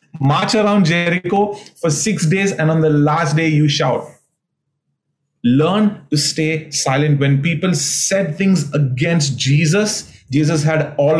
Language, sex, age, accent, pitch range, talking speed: English, male, 30-49, Indian, 140-170 Hz, 140 wpm